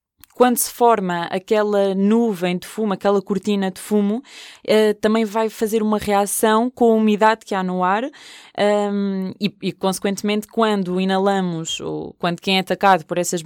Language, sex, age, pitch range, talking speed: Portuguese, female, 20-39, 185-220 Hz, 160 wpm